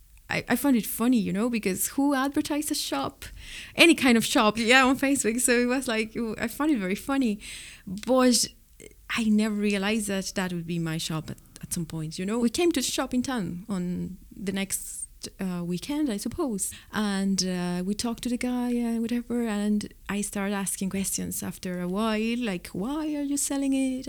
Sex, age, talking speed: female, 30-49, 200 wpm